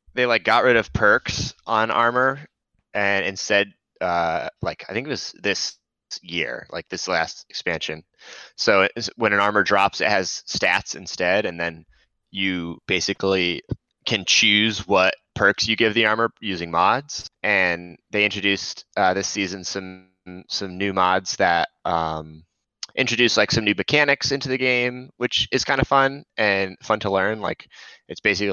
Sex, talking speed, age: male, 160 wpm, 20-39